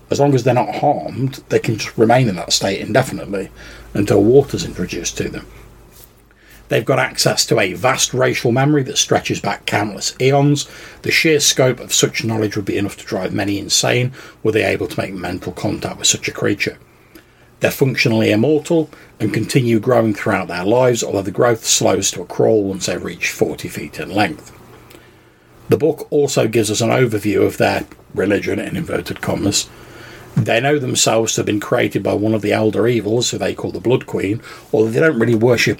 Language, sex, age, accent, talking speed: English, male, 40-59, British, 195 wpm